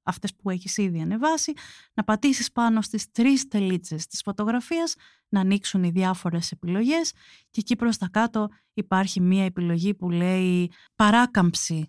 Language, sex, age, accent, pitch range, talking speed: Greek, female, 30-49, native, 185-245 Hz, 145 wpm